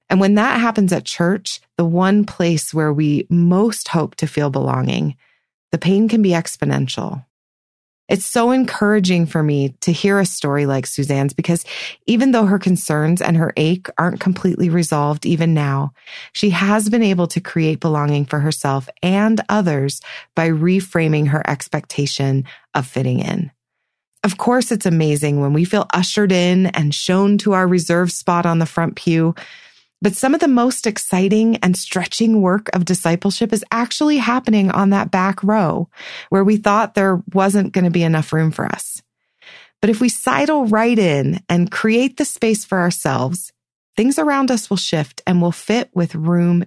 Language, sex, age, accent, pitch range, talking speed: English, female, 30-49, American, 160-210 Hz, 170 wpm